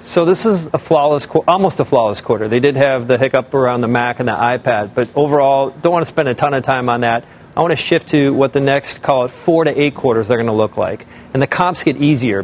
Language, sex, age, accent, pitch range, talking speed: English, male, 40-59, American, 125-155 Hz, 270 wpm